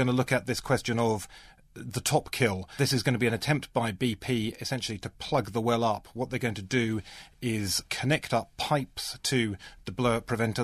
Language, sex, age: English, male, 30-49